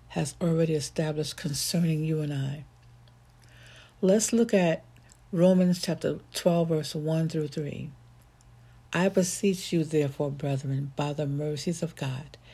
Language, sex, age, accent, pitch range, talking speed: English, female, 60-79, American, 140-170 Hz, 130 wpm